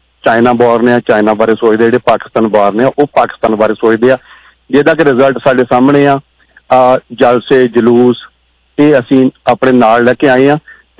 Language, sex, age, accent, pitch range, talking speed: English, male, 40-59, Indian, 125-155 Hz, 175 wpm